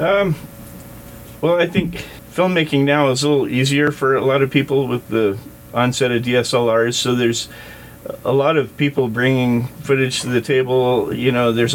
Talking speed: 175 wpm